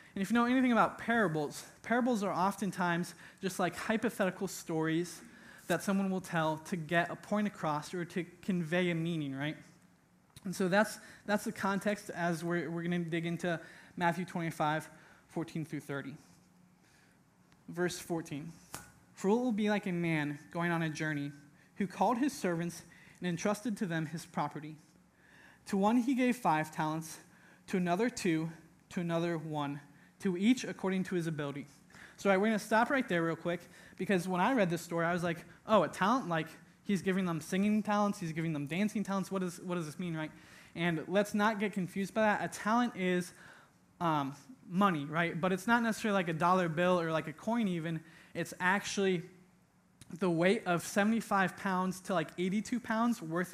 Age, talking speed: 20-39, 185 wpm